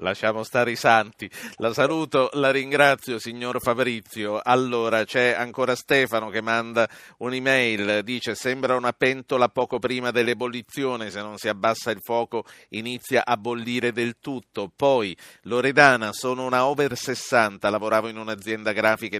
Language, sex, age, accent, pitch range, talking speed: Italian, male, 50-69, native, 100-125 Hz, 140 wpm